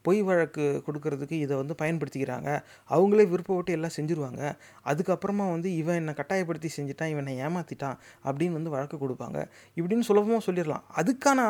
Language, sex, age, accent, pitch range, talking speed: Tamil, male, 30-49, native, 160-210 Hz, 130 wpm